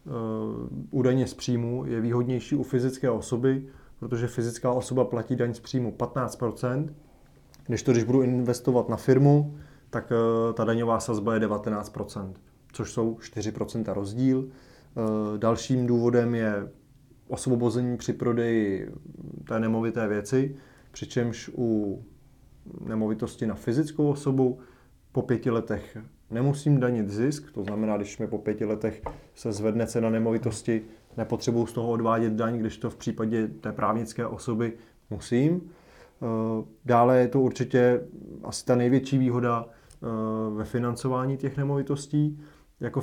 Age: 20-39